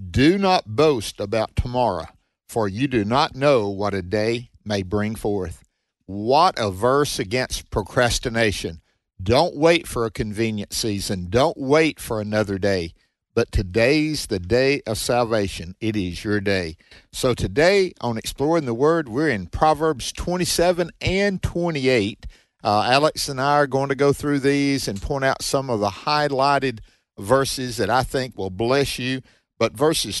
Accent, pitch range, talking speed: American, 105-145 Hz, 160 wpm